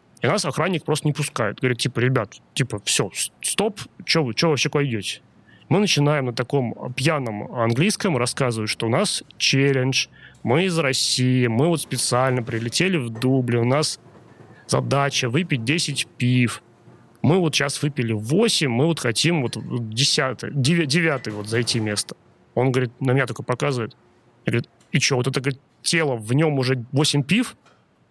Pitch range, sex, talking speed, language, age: 120-155 Hz, male, 160 wpm, Russian, 30-49